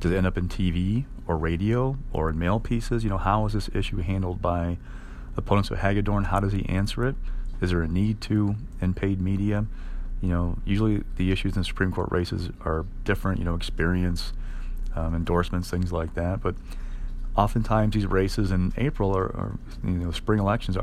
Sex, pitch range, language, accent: male, 85-100 Hz, English, American